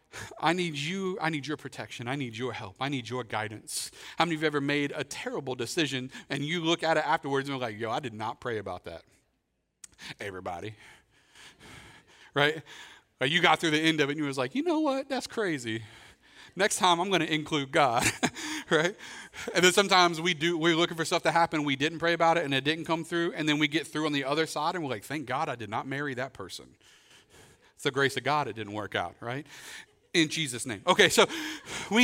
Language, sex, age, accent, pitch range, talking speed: English, male, 40-59, American, 135-185 Hz, 235 wpm